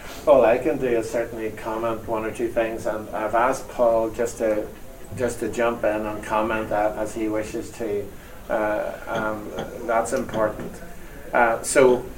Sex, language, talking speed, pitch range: male, English, 170 wpm, 105-125 Hz